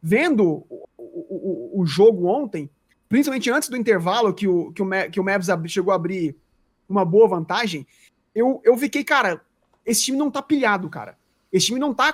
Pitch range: 195-275 Hz